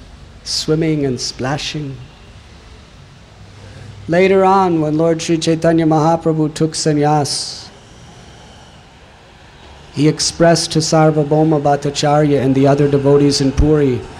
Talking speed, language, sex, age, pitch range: 95 wpm, English, male, 50-69, 125-165 Hz